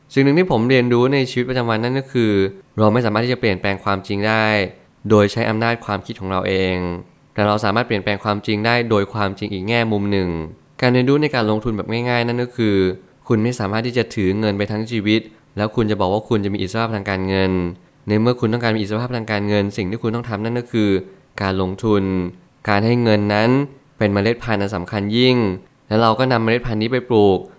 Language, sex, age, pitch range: Thai, male, 20-39, 100-120 Hz